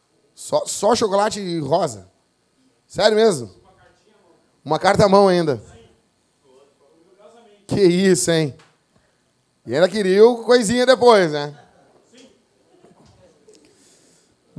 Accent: Brazilian